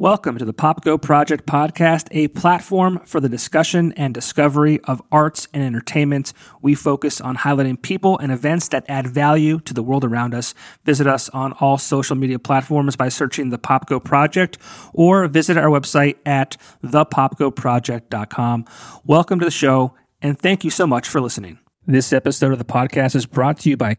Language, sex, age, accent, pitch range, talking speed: English, male, 30-49, American, 130-165 Hz, 180 wpm